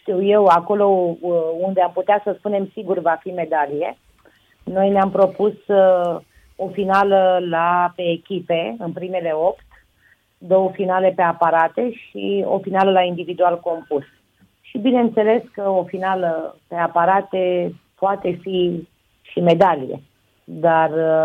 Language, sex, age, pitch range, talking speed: Romanian, female, 30-49, 170-210 Hz, 130 wpm